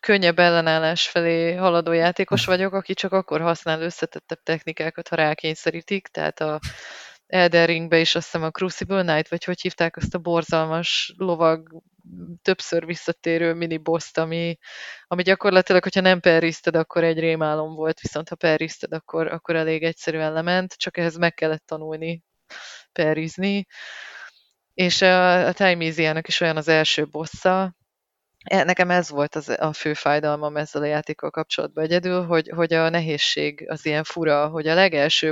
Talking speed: 150 wpm